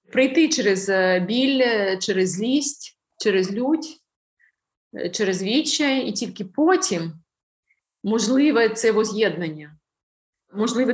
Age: 30-49